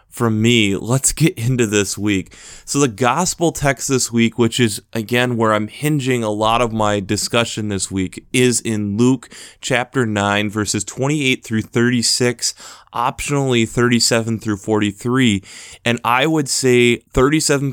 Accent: American